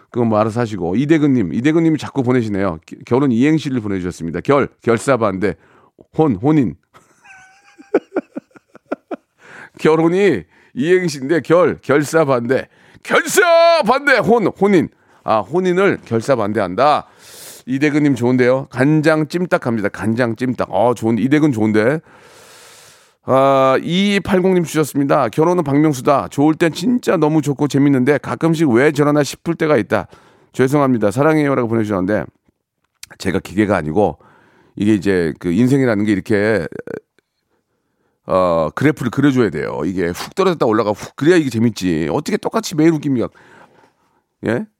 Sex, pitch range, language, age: male, 120-165 Hz, Korean, 40-59